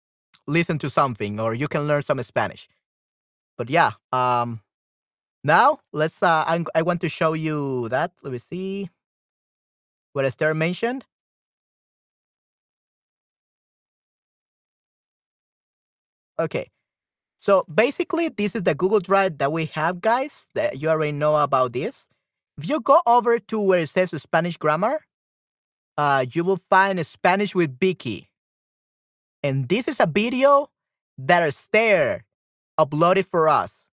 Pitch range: 155-200 Hz